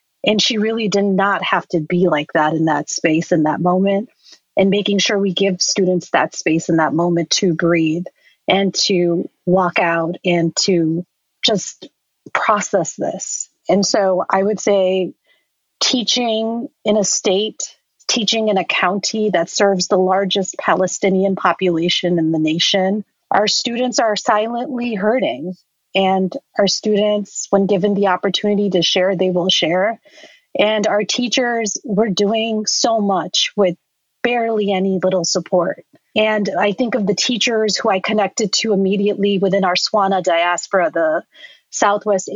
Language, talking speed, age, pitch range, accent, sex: English, 150 wpm, 30-49, 180-210 Hz, American, female